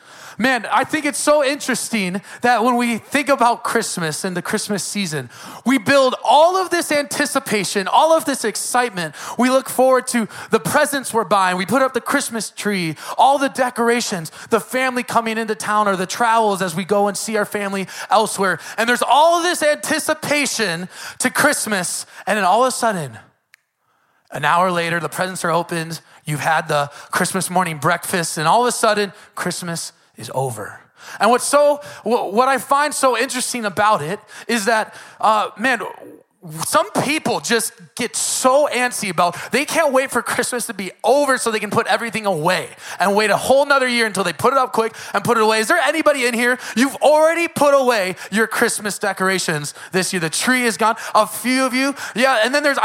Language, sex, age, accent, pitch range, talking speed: English, male, 20-39, American, 195-255 Hz, 195 wpm